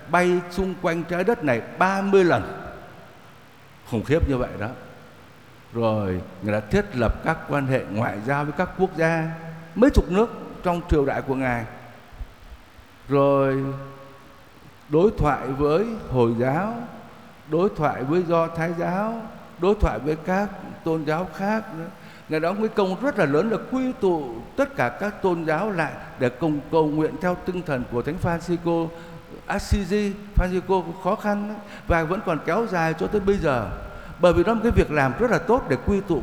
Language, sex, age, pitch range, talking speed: Vietnamese, male, 60-79, 125-190 Hz, 175 wpm